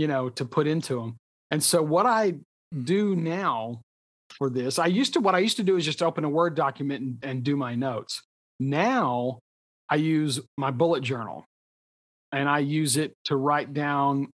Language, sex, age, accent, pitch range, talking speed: English, male, 40-59, American, 125-155 Hz, 190 wpm